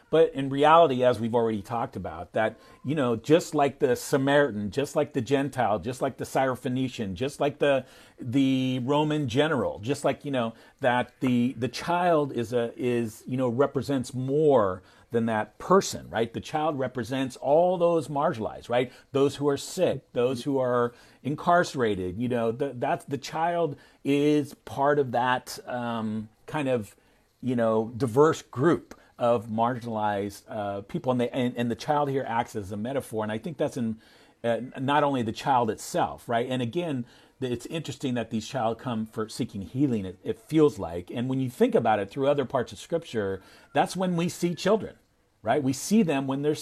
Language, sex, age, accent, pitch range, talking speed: English, male, 40-59, American, 115-145 Hz, 185 wpm